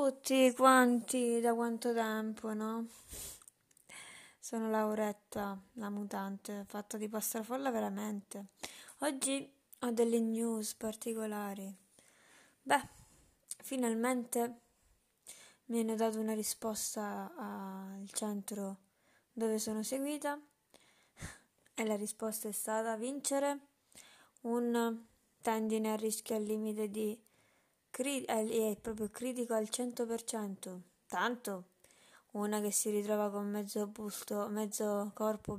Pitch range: 210-235 Hz